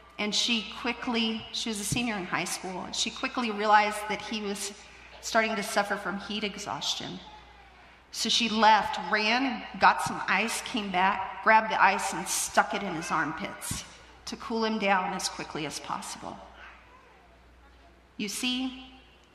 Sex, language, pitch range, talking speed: female, English, 200-230 Hz, 160 wpm